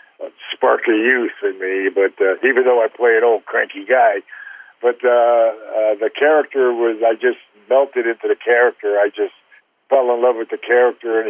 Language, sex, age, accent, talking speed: English, male, 50-69, American, 180 wpm